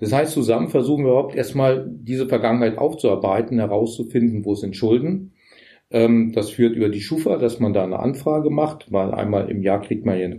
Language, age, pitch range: German, 40-59, 110-130 Hz